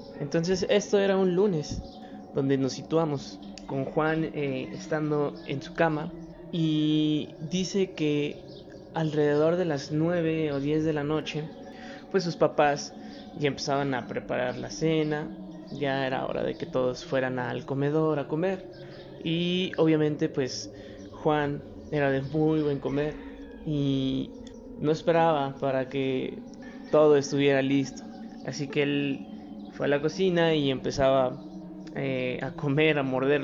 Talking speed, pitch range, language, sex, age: 140 wpm, 140-170 Hz, Spanish, male, 20-39